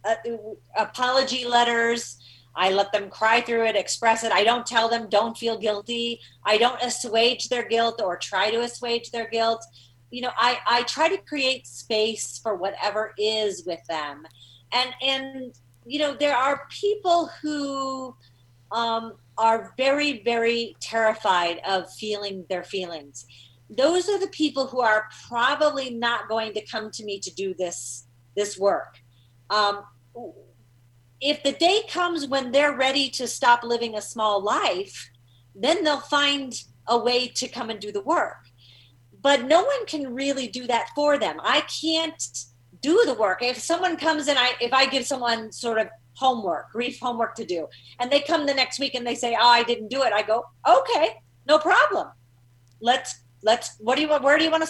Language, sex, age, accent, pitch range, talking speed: English, female, 40-59, American, 190-270 Hz, 180 wpm